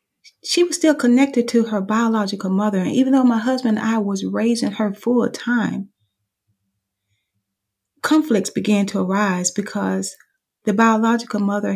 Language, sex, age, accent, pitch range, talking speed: English, female, 30-49, American, 190-225 Hz, 145 wpm